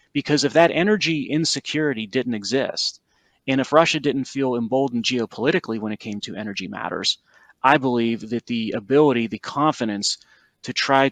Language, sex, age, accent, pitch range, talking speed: English, male, 30-49, American, 115-135 Hz, 155 wpm